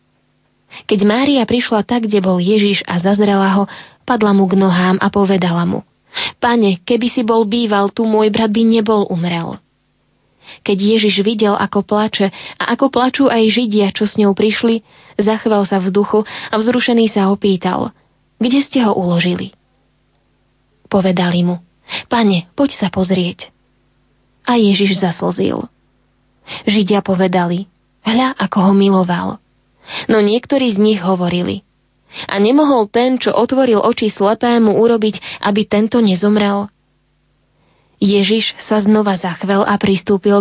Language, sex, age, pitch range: Slovak, female, 20-39, 190-225 Hz